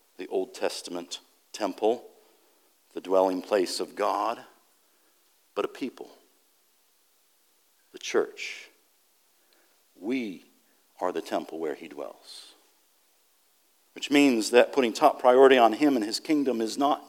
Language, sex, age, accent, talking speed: English, male, 50-69, American, 120 wpm